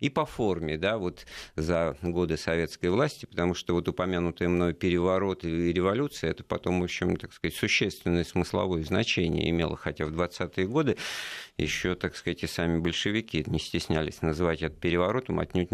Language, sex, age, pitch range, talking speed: Russian, male, 50-69, 85-100 Hz, 165 wpm